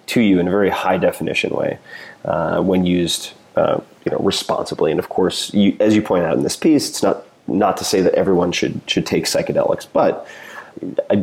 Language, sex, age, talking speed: English, male, 30-49, 210 wpm